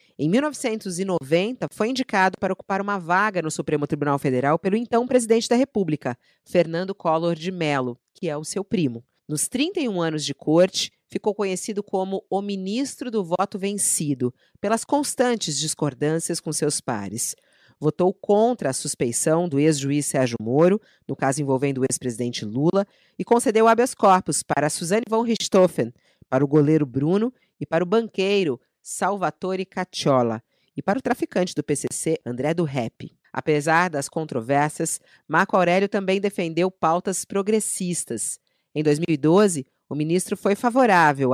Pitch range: 145-205 Hz